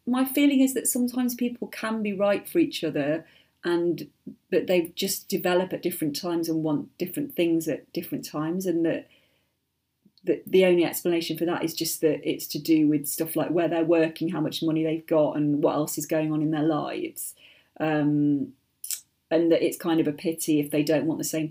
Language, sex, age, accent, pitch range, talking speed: English, female, 30-49, British, 155-205 Hz, 210 wpm